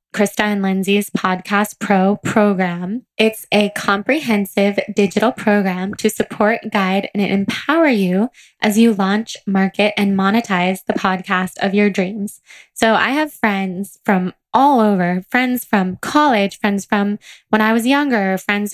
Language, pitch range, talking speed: English, 195-225 Hz, 145 wpm